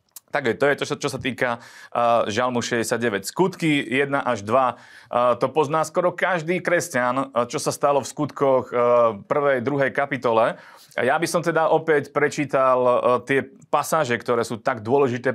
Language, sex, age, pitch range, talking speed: Slovak, male, 30-49, 120-145 Hz, 170 wpm